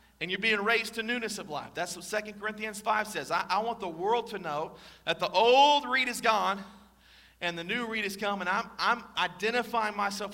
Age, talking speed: 40-59, 220 wpm